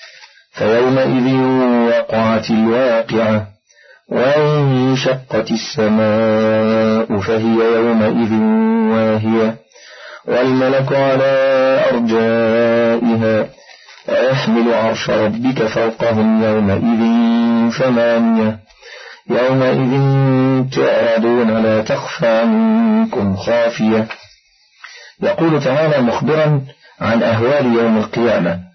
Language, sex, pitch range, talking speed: Arabic, male, 110-130 Hz, 65 wpm